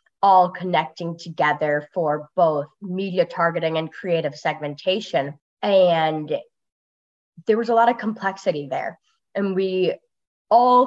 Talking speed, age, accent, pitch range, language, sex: 115 wpm, 20-39, American, 155-200 Hz, English, female